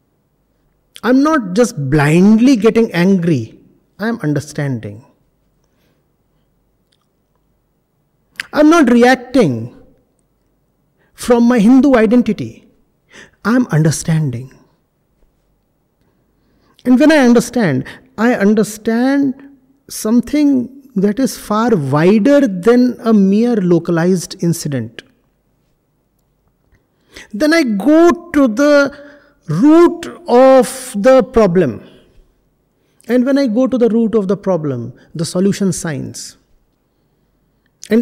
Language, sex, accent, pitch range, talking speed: English, male, Indian, 190-260 Hz, 90 wpm